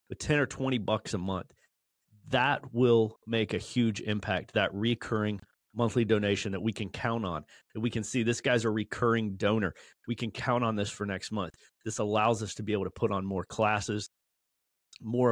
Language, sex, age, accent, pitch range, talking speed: English, male, 30-49, American, 100-120 Hz, 200 wpm